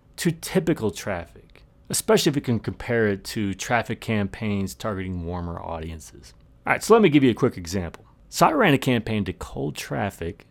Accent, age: American, 30-49